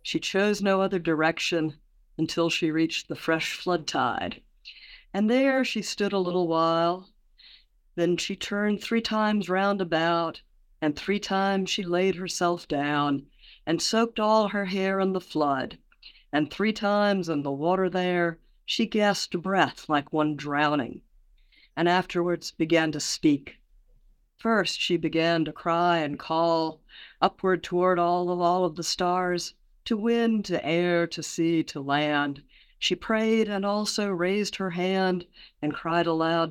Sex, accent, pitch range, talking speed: female, American, 160-195 Hz, 150 wpm